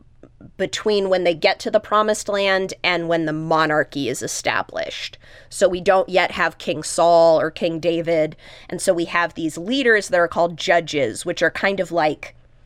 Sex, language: female, English